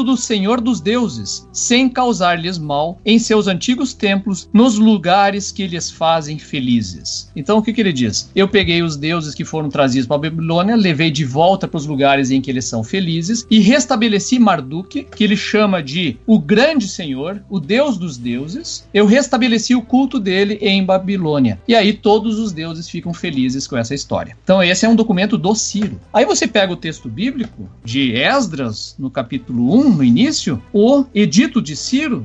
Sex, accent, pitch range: male, Brazilian, 155-225 Hz